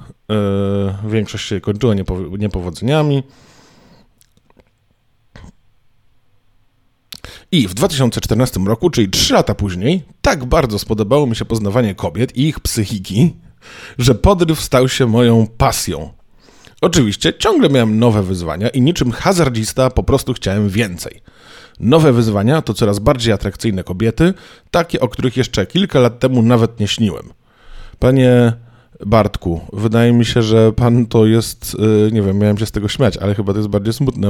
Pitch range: 100-130 Hz